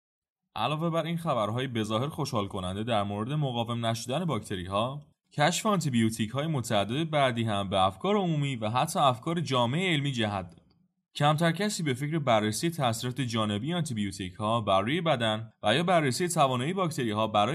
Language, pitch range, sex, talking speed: Persian, 105-160 Hz, male, 155 wpm